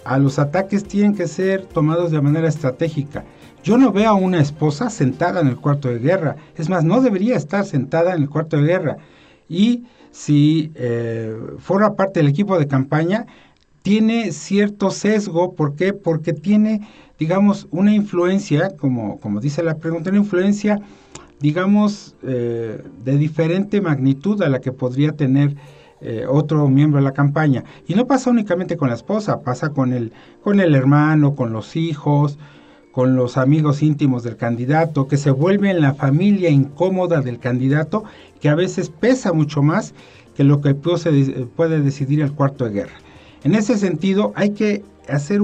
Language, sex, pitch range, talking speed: Spanish, male, 140-190 Hz, 170 wpm